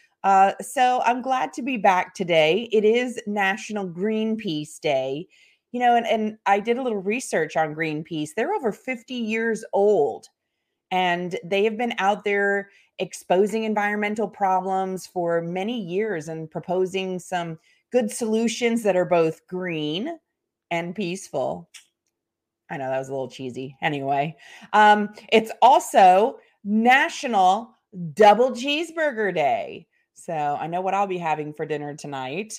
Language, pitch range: English, 170-235 Hz